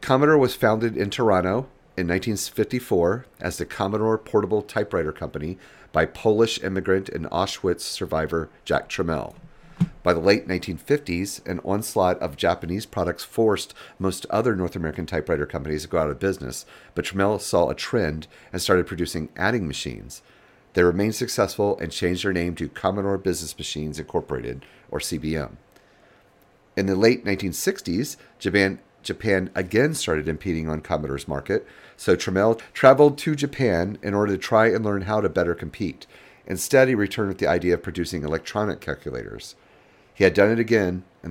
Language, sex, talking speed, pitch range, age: English, male, 160 wpm, 85-105 Hz, 40-59